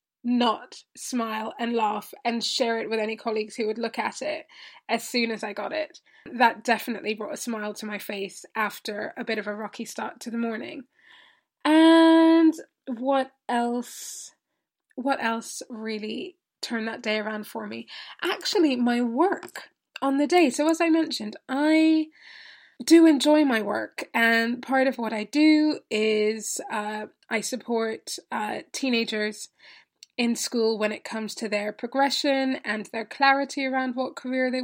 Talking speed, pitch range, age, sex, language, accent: 160 wpm, 225-275 Hz, 20-39, female, English, British